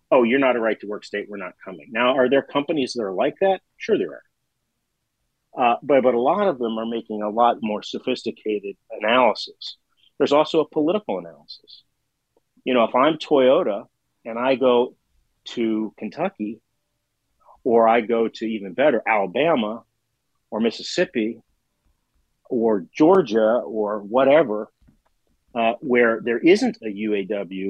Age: 40-59